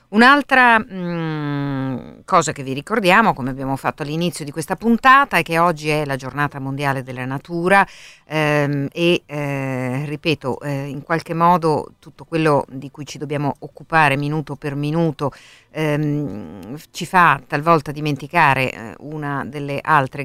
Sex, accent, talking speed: female, native, 140 wpm